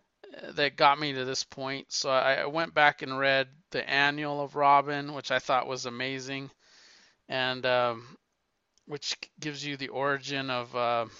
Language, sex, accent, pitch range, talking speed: English, male, American, 125-150 Hz, 165 wpm